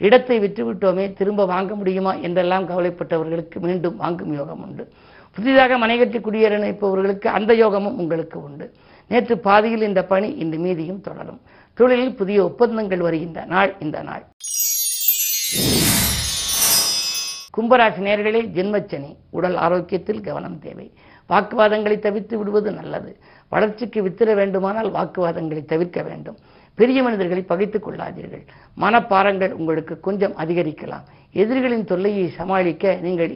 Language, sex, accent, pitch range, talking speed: Tamil, female, native, 175-215 Hz, 110 wpm